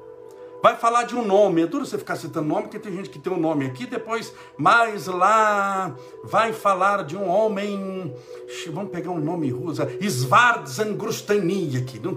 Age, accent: 60-79, Brazilian